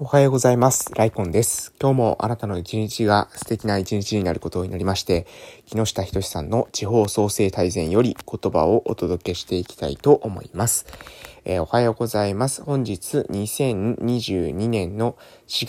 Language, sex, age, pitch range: Japanese, male, 20-39, 95-115 Hz